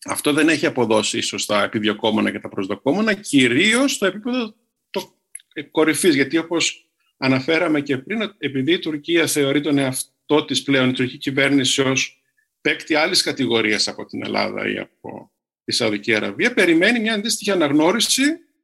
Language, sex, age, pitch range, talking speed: Greek, male, 50-69, 130-215 Hz, 155 wpm